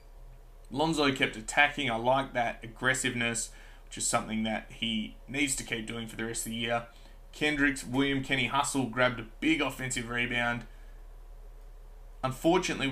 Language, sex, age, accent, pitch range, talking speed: English, male, 20-39, Australian, 110-130 Hz, 150 wpm